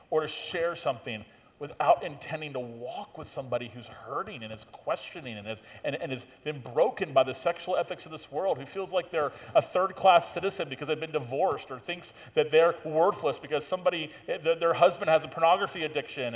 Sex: male